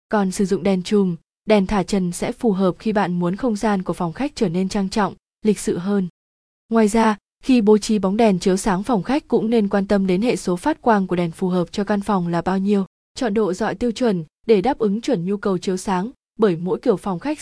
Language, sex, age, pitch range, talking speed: Vietnamese, female, 20-39, 185-230 Hz, 255 wpm